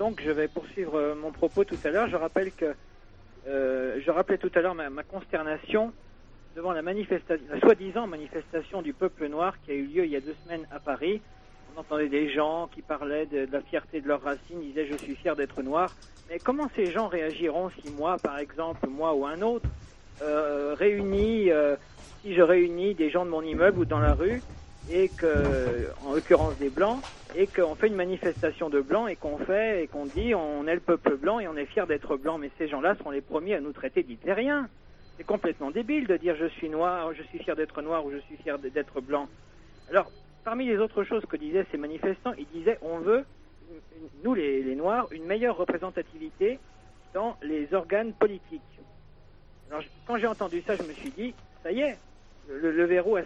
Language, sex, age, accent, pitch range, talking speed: French, male, 50-69, French, 150-195 Hz, 210 wpm